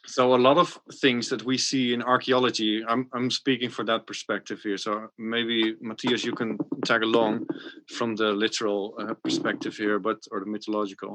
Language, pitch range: English, 105-115 Hz